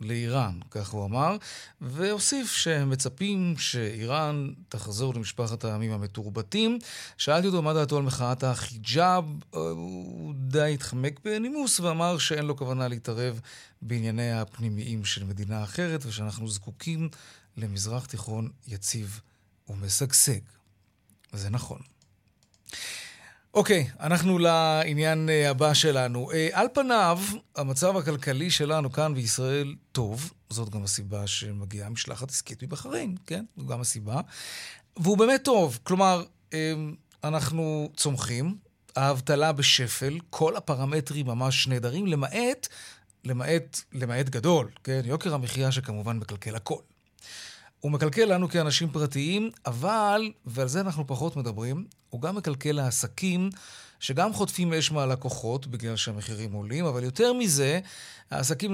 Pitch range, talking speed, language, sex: 115-165 Hz, 115 wpm, Hebrew, male